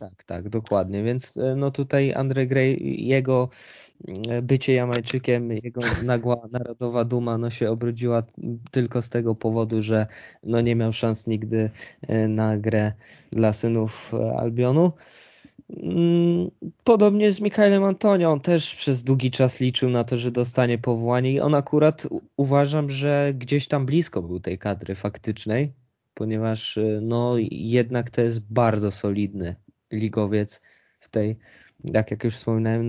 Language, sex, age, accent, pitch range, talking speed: Polish, male, 20-39, native, 110-130 Hz, 135 wpm